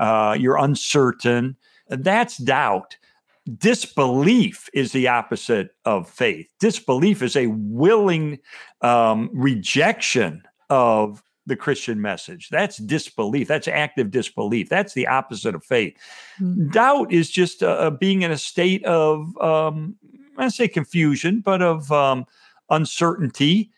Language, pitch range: English, 125-180 Hz